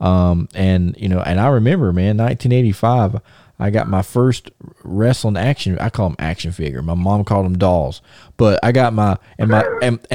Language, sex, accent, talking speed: English, male, American, 185 wpm